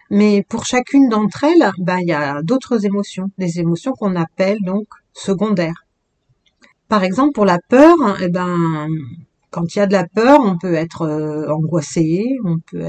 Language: French